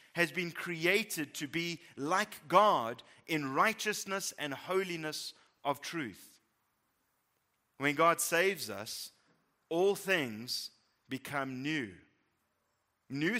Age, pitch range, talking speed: 30-49, 150-205 Hz, 100 wpm